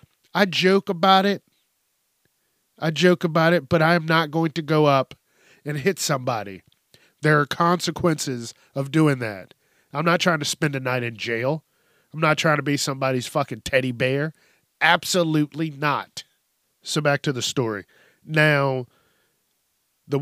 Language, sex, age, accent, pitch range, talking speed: English, male, 40-59, American, 135-160 Hz, 155 wpm